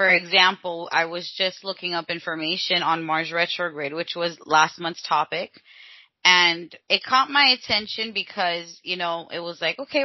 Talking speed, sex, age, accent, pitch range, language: 165 wpm, female, 20-39, American, 170-215 Hz, English